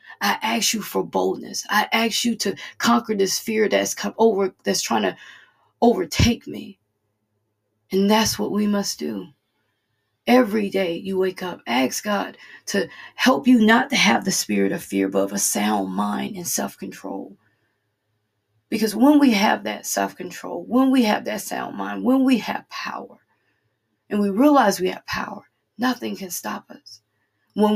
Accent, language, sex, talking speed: American, English, female, 165 wpm